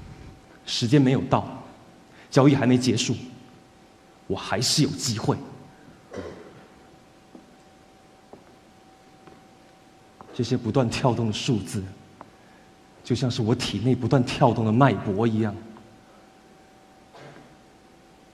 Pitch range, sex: 110-175 Hz, male